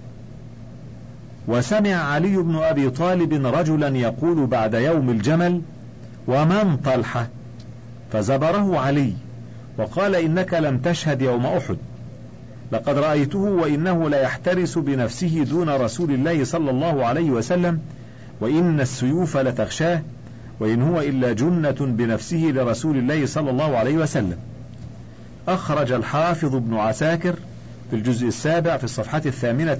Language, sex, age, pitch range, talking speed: Arabic, male, 50-69, 120-165 Hz, 115 wpm